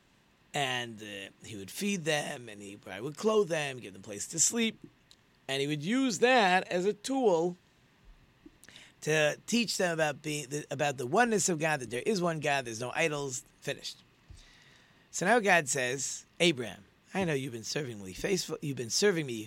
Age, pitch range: 40-59, 125-165 Hz